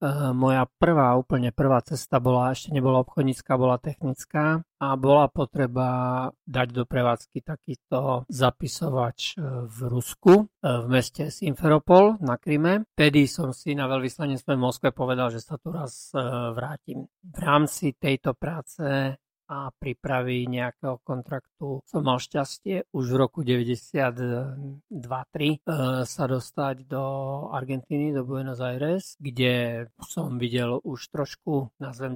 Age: 50-69